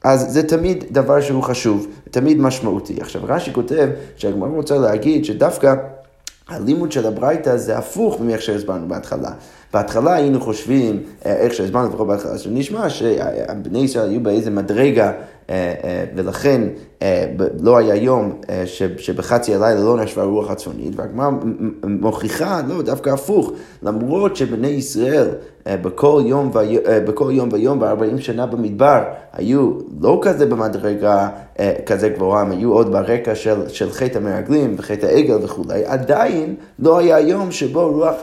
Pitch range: 110-145 Hz